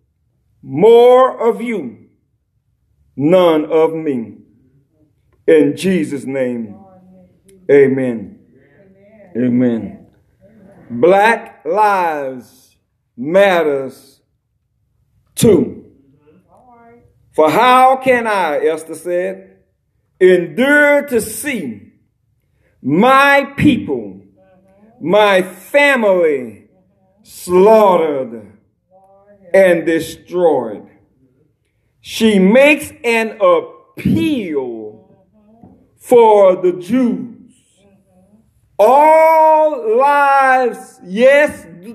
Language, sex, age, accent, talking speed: English, male, 50-69, American, 60 wpm